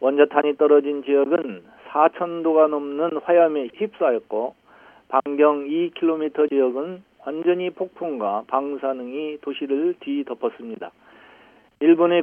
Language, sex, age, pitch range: Korean, male, 50-69, 140-175 Hz